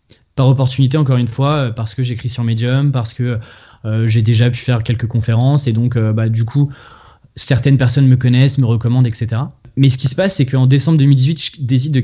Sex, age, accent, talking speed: male, 20-39, French, 220 wpm